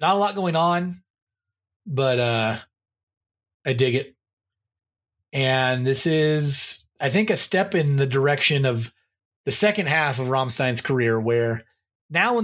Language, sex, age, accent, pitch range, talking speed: English, male, 30-49, American, 110-150 Hz, 145 wpm